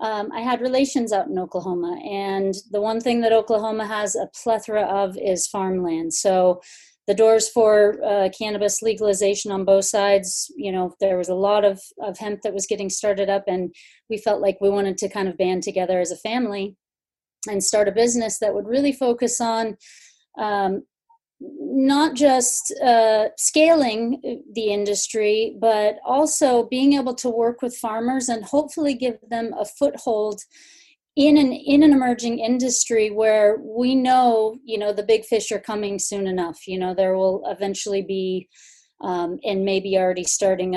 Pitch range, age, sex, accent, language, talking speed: 195-235 Hz, 30-49, female, American, English, 170 wpm